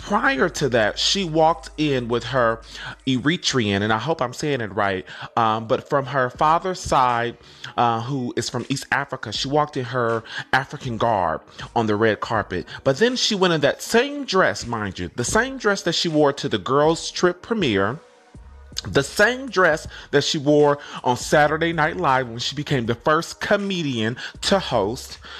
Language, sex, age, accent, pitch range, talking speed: English, male, 30-49, American, 130-185 Hz, 180 wpm